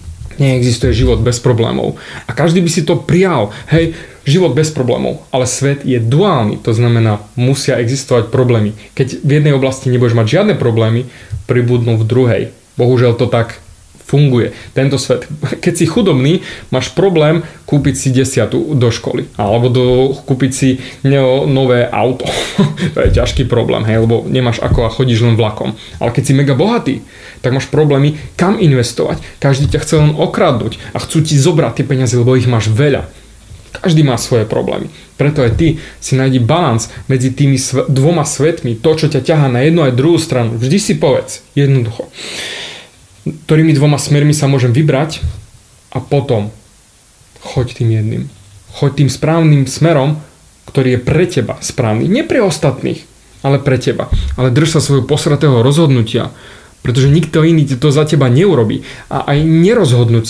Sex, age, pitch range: male, 20-39, 120-150 Hz